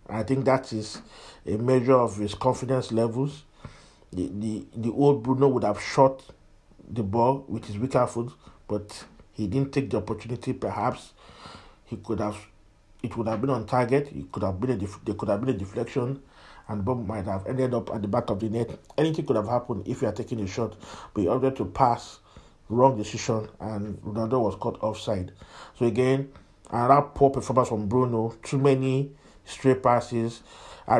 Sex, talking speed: male, 190 wpm